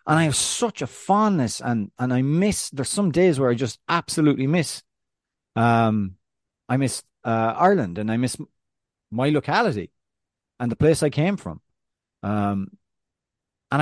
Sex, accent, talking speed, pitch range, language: male, Irish, 155 wpm, 115-150 Hz, English